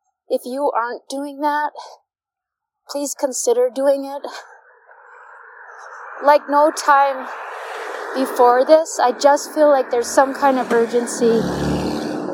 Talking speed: 110 wpm